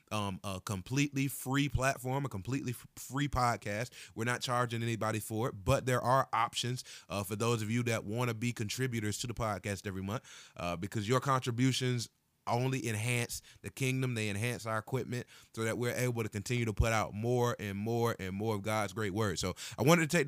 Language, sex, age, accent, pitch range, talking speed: English, male, 30-49, American, 115-140 Hz, 205 wpm